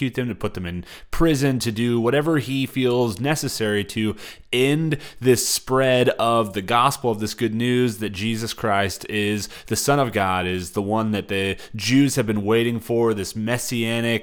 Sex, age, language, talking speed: male, 20-39, English, 180 wpm